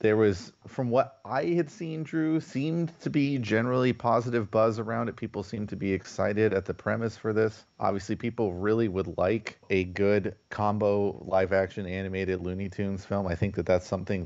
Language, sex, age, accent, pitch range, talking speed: English, male, 30-49, American, 90-110 Hz, 185 wpm